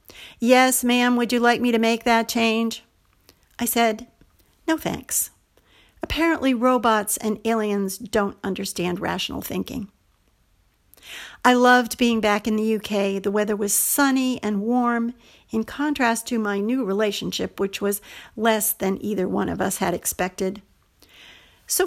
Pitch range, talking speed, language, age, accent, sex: 210-275 Hz, 145 wpm, English, 50-69, American, female